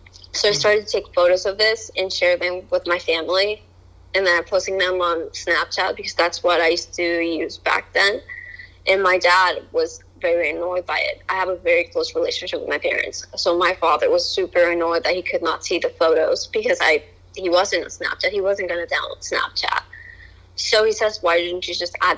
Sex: female